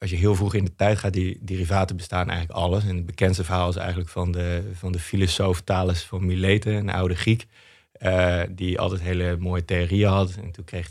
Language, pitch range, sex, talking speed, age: Dutch, 90-105 Hz, male, 215 wpm, 30-49